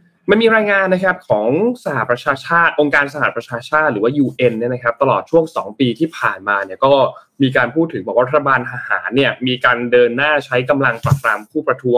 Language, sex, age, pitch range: Thai, male, 20-39, 120-165 Hz